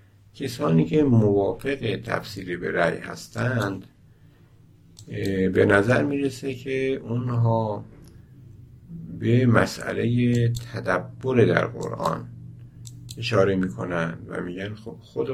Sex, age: male, 60-79